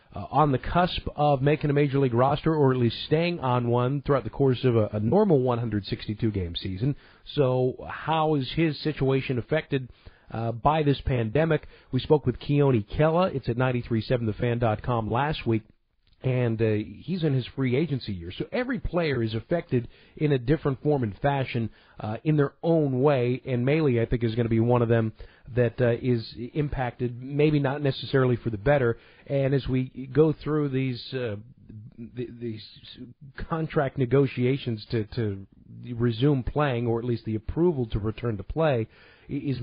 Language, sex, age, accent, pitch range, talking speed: English, male, 40-59, American, 115-145 Hz, 170 wpm